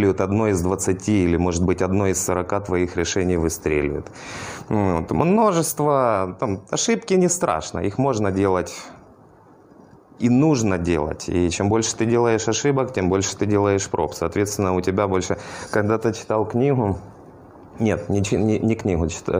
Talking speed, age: 145 wpm, 20-39